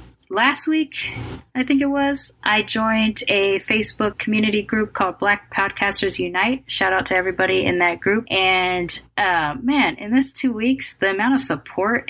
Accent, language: American, English